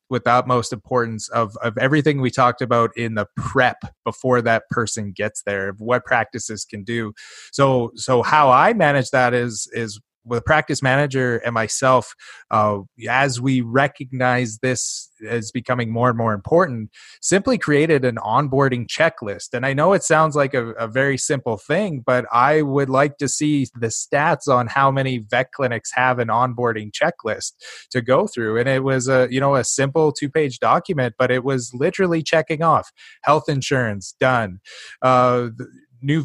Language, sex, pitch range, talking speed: English, male, 115-140 Hz, 165 wpm